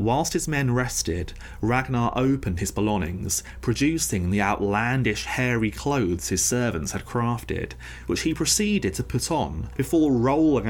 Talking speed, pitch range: 140 wpm, 95-125 Hz